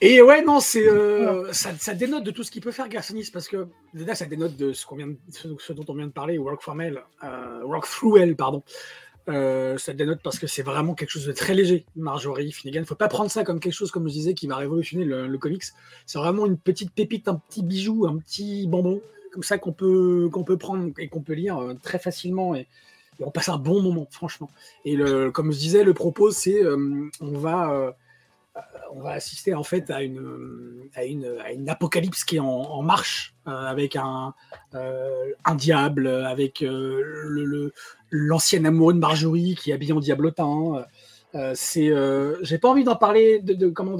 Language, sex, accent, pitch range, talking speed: French, male, French, 145-190 Hz, 220 wpm